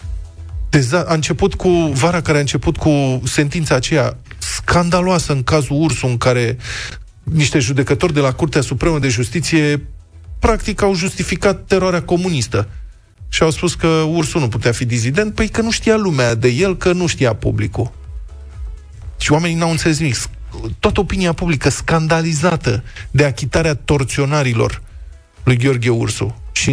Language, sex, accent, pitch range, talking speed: Romanian, male, native, 110-160 Hz, 150 wpm